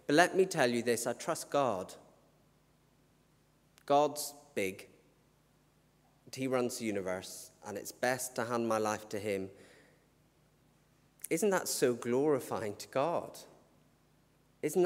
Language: English